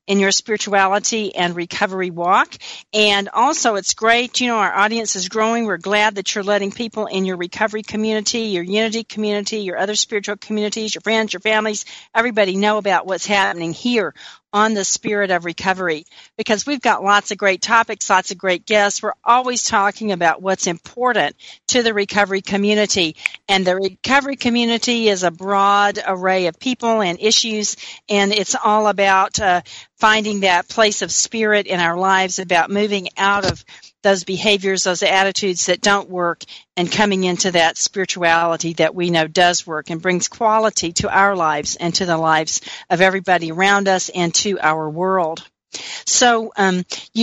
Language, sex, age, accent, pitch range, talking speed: English, female, 50-69, American, 185-215 Hz, 170 wpm